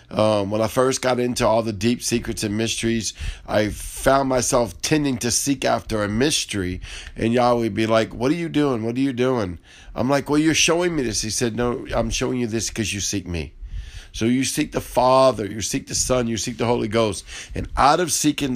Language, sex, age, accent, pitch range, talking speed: English, male, 50-69, American, 100-125 Hz, 225 wpm